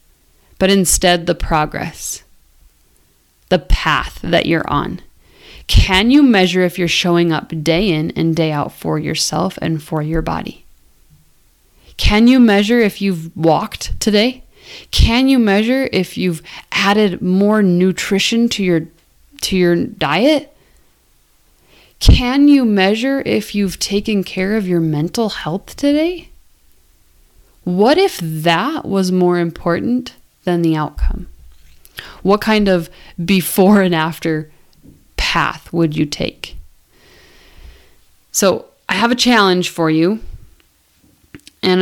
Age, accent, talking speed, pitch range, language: 20-39, American, 120 wpm, 160-210 Hz, English